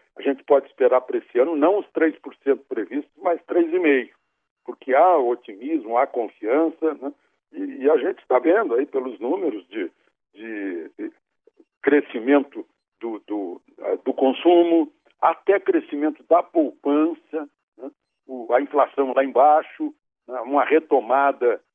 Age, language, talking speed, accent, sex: 60-79, Portuguese, 130 wpm, Brazilian, male